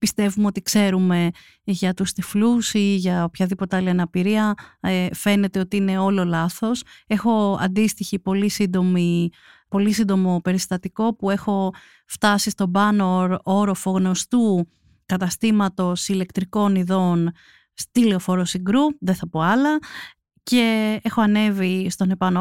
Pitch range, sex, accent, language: 185-230 Hz, female, native, Greek